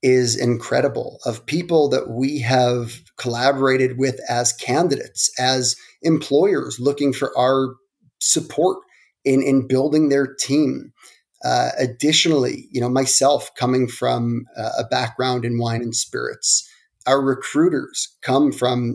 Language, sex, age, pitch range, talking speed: English, male, 30-49, 125-140 Hz, 125 wpm